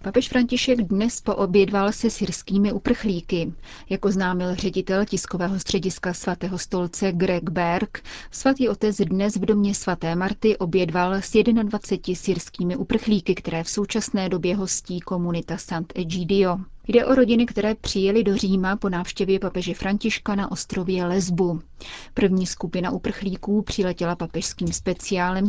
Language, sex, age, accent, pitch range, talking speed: Czech, female, 30-49, native, 180-205 Hz, 130 wpm